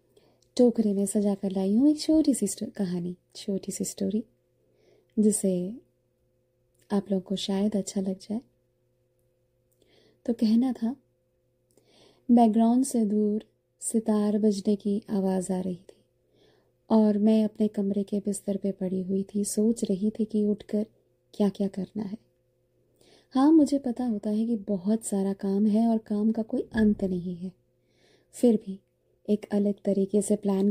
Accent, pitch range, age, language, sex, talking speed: native, 190-225 Hz, 20-39, Hindi, female, 150 wpm